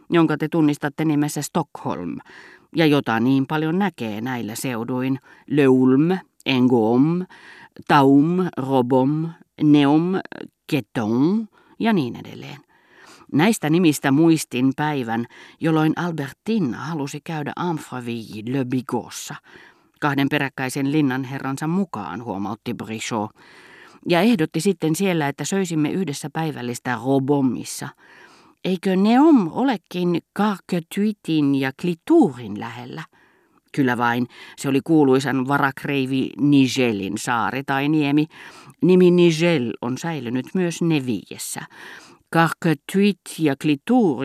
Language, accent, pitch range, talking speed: Finnish, native, 130-165 Hz, 100 wpm